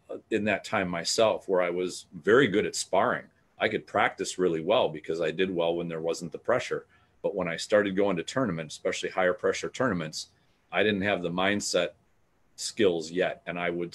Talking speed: 200 wpm